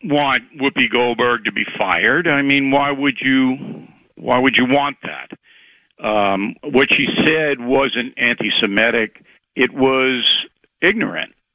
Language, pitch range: English, 130-155 Hz